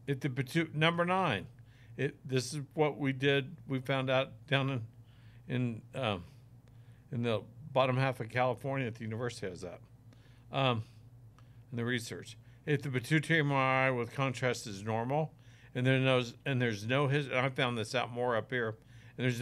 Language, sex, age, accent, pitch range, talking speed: English, male, 60-79, American, 115-135 Hz, 180 wpm